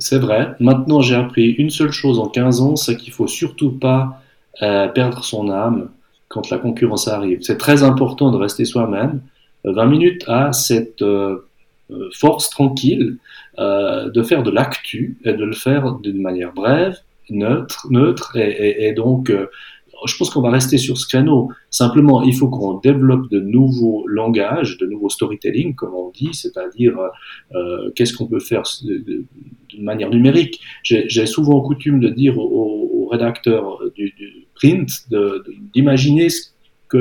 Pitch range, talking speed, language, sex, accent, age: 115-145 Hz, 175 wpm, French, male, French, 40-59